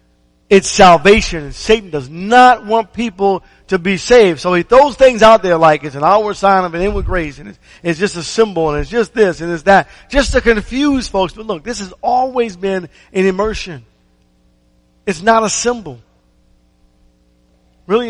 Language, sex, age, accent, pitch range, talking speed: English, male, 50-69, American, 145-195 Hz, 185 wpm